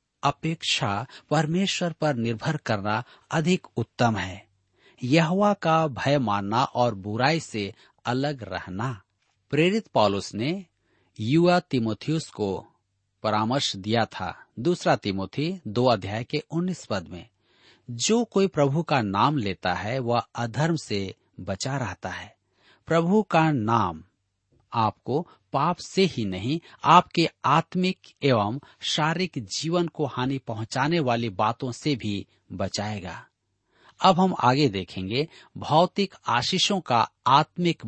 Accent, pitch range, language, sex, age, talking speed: native, 105-160 Hz, Hindi, male, 40-59, 115 wpm